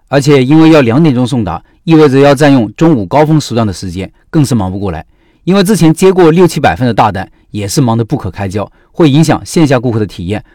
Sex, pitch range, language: male, 115-160 Hz, Chinese